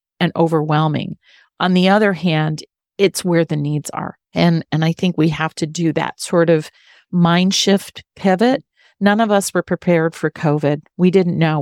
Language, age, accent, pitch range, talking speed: English, 40-59, American, 160-185 Hz, 180 wpm